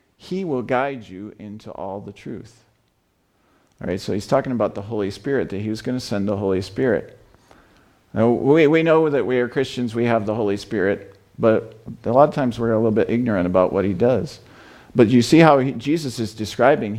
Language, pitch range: English, 100-125 Hz